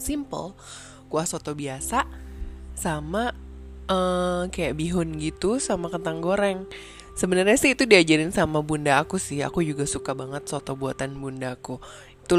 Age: 20-39